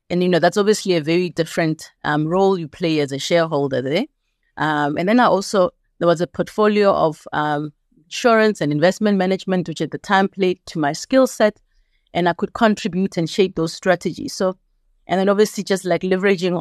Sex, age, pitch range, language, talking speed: female, 30-49, 155-200 Hz, English, 200 wpm